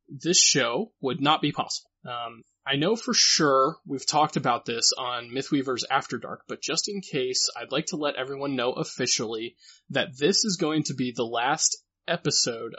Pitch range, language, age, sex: 130-155 Hz, English, 20-39, male